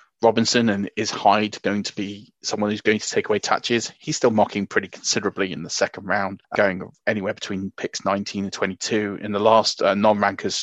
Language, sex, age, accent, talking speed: English, male, 30-49, British, 200 wpm